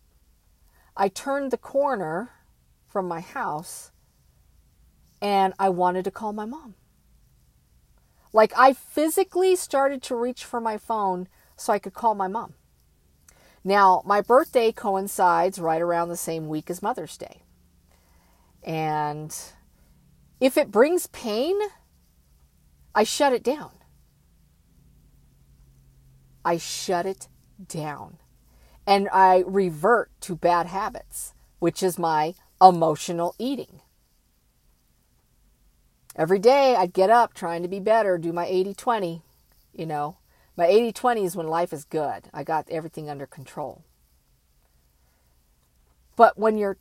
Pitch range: 135-220 Hz